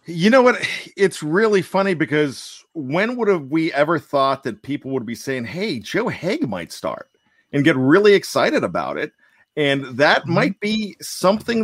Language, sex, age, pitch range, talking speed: English, male, 50-69, 140-195 Hz, 175 wpm